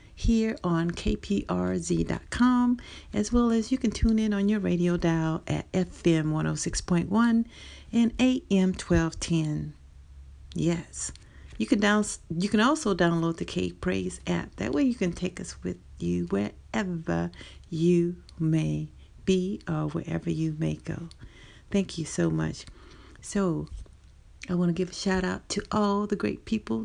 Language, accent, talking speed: English, American, 165 wpm